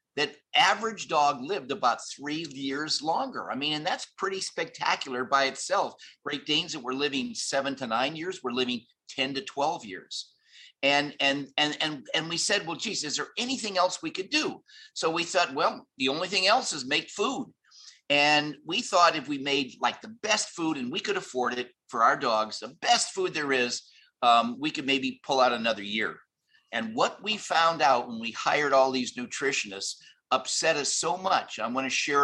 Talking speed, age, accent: 200 wpm, 50-69, American